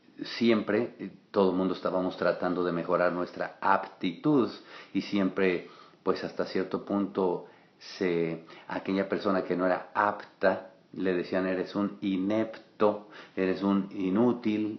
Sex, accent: male, Mexican